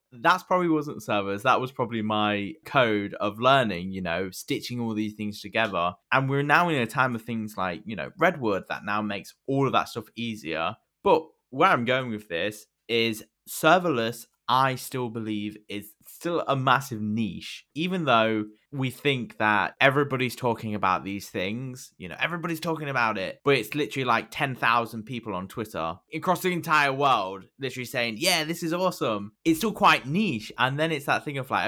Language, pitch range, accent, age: English, 105-145 Hz, British, 20-39